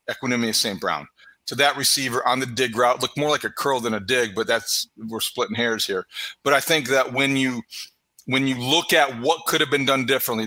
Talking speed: 230 wpm